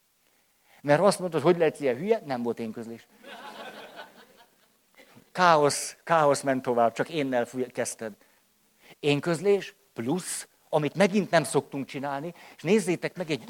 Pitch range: 135-190 Hz